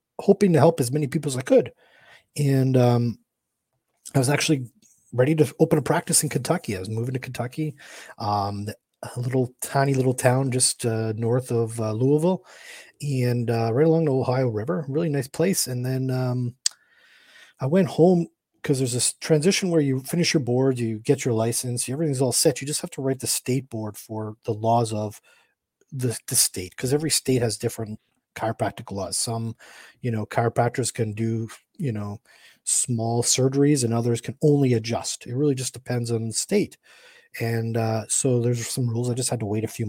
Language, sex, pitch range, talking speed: English, male, 115-150 Hz, 190 wpm